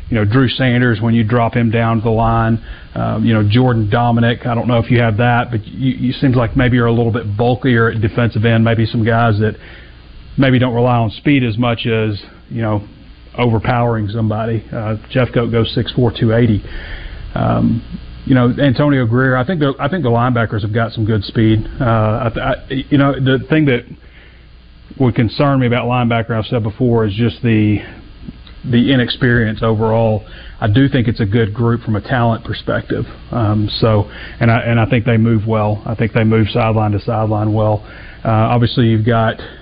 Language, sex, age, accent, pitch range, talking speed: English, male, 30-49, American, 110-120 Hz, 200 wpm